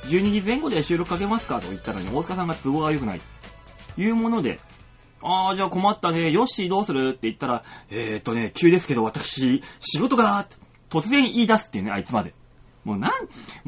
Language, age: Japanese, 30-49